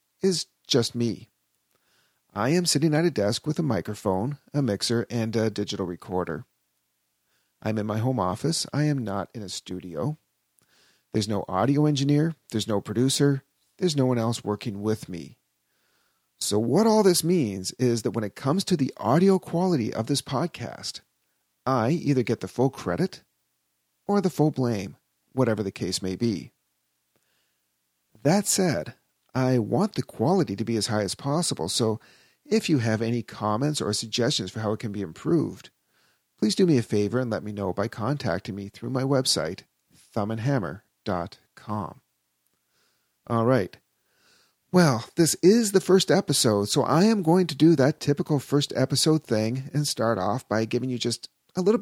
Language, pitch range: English, 100-145 Hz